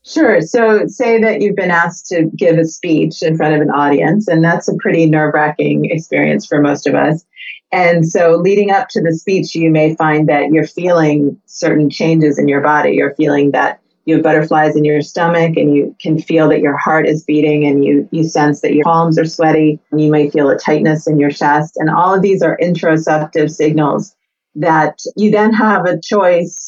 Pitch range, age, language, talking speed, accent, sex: 150-170 Hz, 30-49, English, 210 wpm, American, female